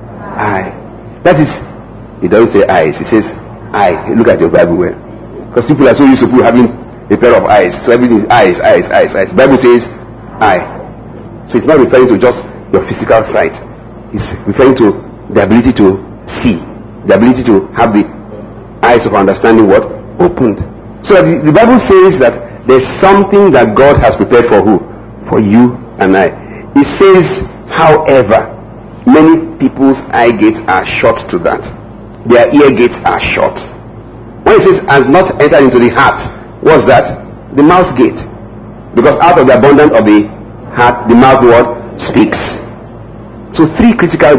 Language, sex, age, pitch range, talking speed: English, male, 50-69, 115-140 Hz, 170 wpm